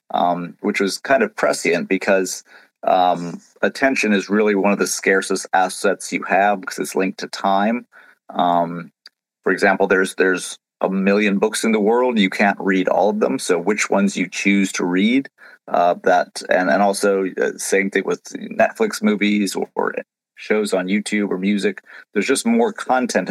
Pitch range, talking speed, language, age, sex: 95-105 Hz, 175 wpm, English, 40-59, male